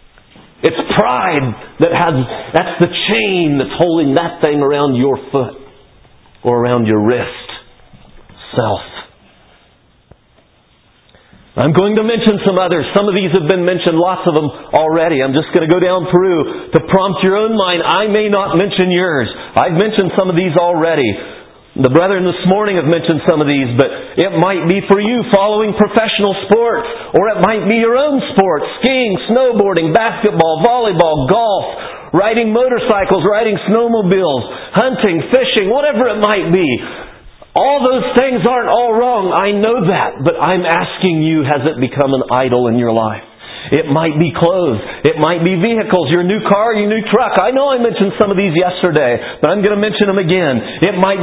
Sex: male